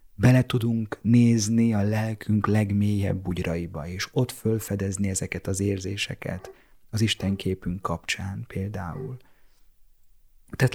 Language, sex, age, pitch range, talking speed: Hungarian, male, 30-49, 95-110 Hz, 100 wpm